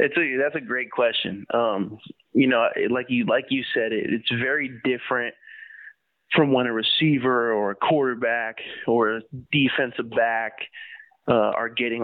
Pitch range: 115-155 Hz